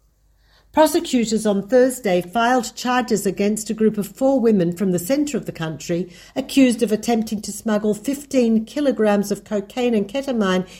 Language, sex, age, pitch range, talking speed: Hebrew, female, 60-79, 185-235 Hz, 155 wpm